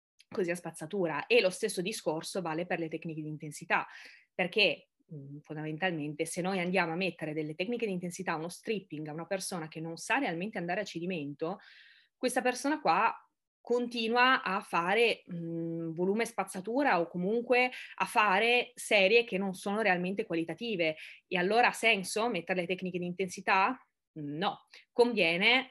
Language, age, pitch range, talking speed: Italian, 20-39, 155-215 Hz, 150 wpm